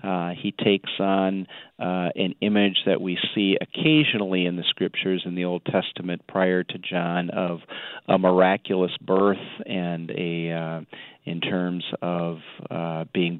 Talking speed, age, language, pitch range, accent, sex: 150 wpm, 40-59, English, 80-90 Hz, American, male